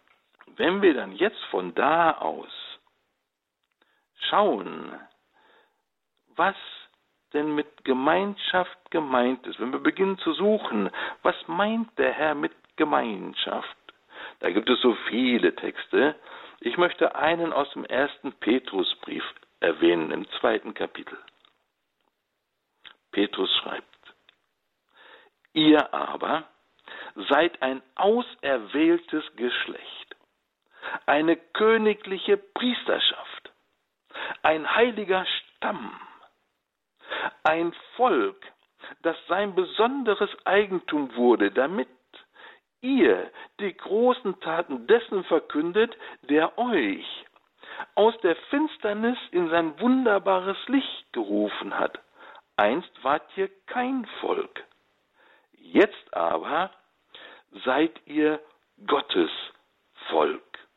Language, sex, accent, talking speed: German, male, German, 90 wpm